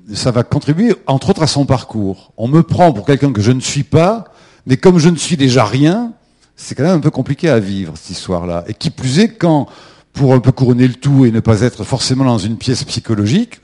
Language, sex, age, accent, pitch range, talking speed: French, male, 50-69, French, 110-145 Hz, 240 wpm